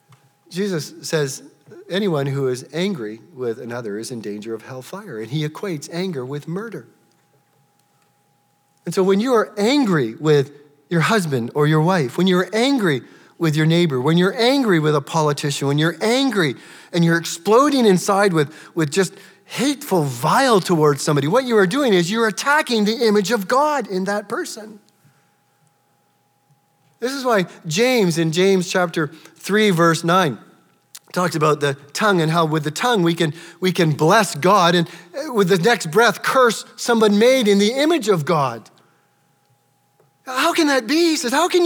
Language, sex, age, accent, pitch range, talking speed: English, male, 40-59, American, 155-225 Hz, 170 wpm